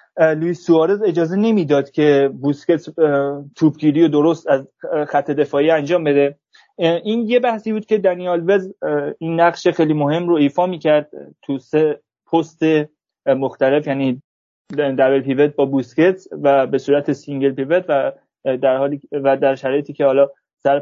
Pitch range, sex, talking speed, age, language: 145-185 Hz, male, 150 wpm, 30-49, Persian